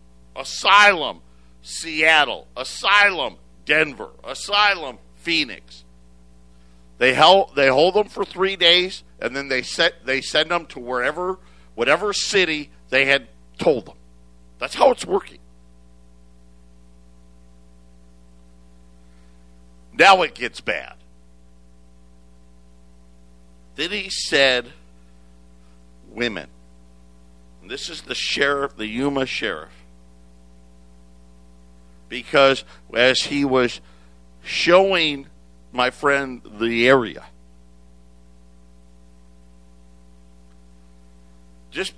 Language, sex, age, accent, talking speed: English, male, 50-69, American, 85 wpm